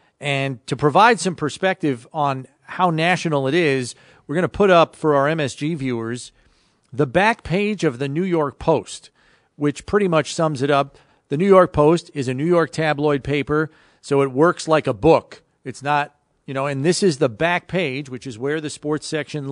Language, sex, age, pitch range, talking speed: English, male, 40-59, 130-160 Hz, 200 wpm